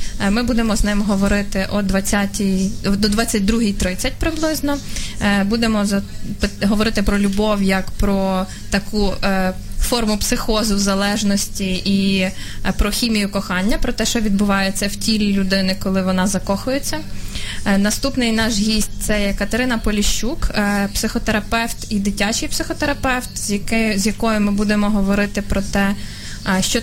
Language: Ukrainian